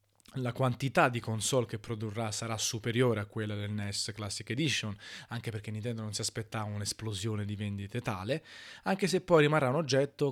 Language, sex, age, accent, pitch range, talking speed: Italian, male, 20-39, native, 110-140 Hz, 175 wpm